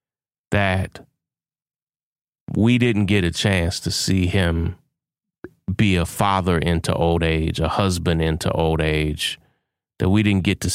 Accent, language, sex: American, English, male